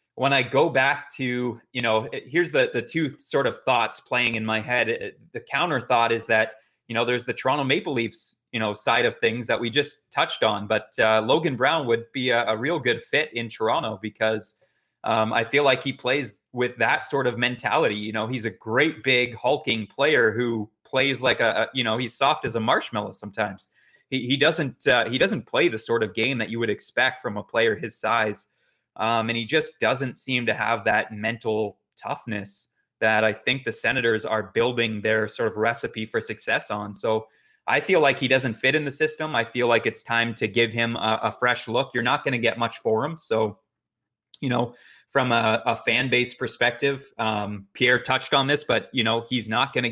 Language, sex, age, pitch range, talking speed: English, male, 20-39, 110-130 Hz, 220 wpm